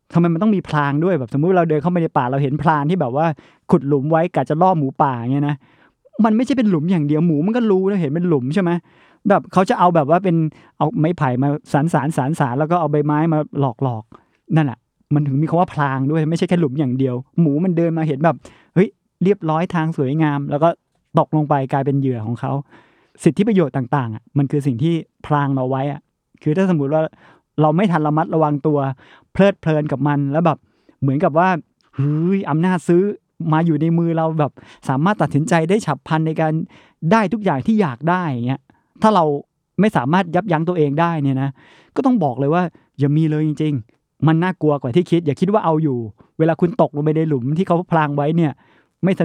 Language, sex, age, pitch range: Thai, male, 20-39, 145-175 Hz